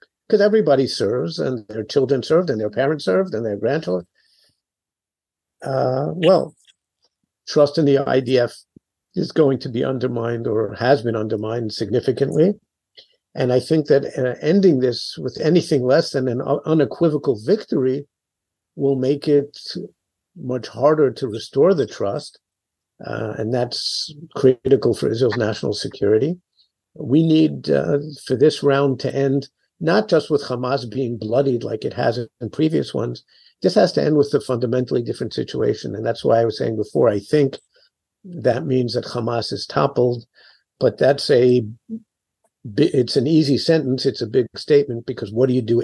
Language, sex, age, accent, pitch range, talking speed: English, male, 50-69, American, 120-145 Hz, 160 wpm